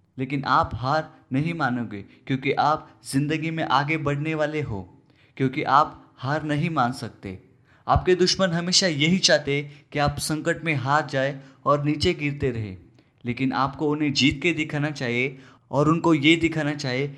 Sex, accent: male, native